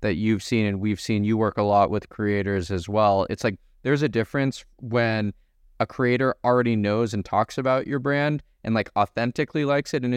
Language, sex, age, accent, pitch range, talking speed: English, male, 20-39, American, 105-125 Hz, 205 wpm